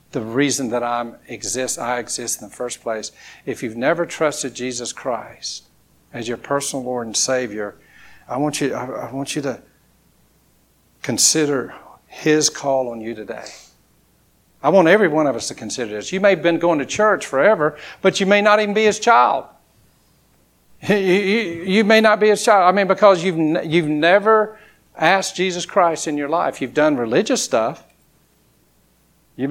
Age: 60-79